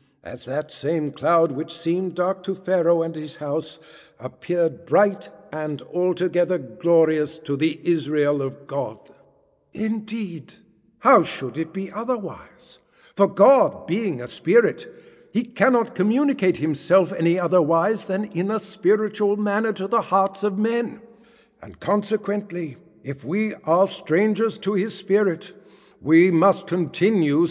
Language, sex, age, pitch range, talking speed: English, male, 60-79, 145-195 Hz, 135 wpm